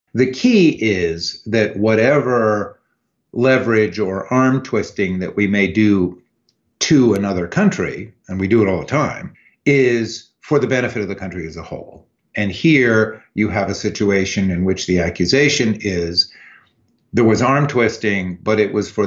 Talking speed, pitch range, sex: 165 wpm, 95-115 Hz, male